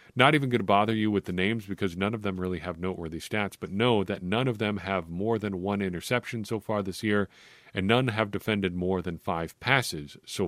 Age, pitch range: 40-59, 95-120 Hz